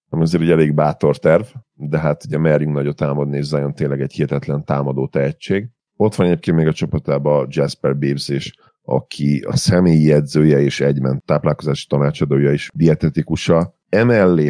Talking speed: 165 wpm